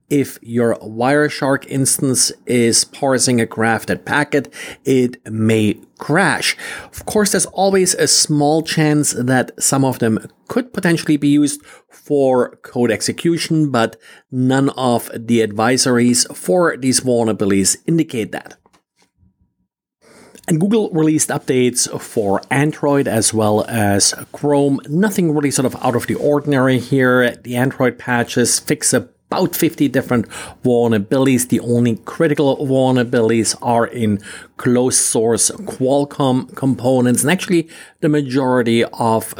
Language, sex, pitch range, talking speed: English, male, 115-145 Hz, 125 wpm